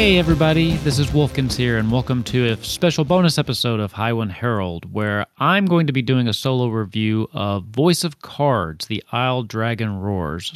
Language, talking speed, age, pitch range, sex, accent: English, 195 wpm, 30-49, 105-140 Hz, male, American